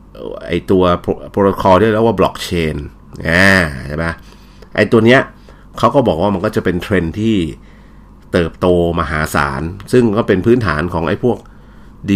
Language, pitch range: Thai, 85-105 Hz